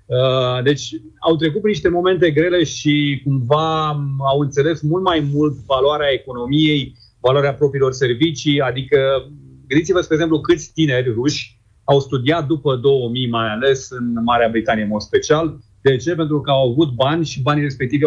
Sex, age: male, 30-49